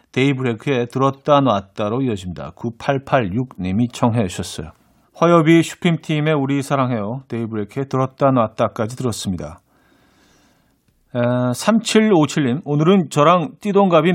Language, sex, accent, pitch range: Korean, male, native, 120-160 Hz